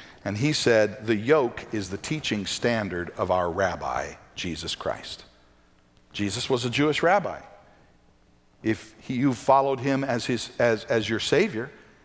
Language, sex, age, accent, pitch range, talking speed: English, male, 50-69, American, 100-145 Hz, 140 wpm